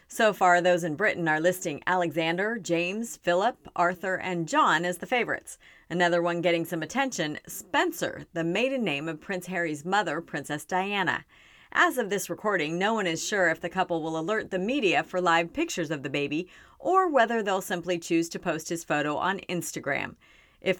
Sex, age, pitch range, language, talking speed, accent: female, 40-59, 165-220 Hz, English, 185 wpm, American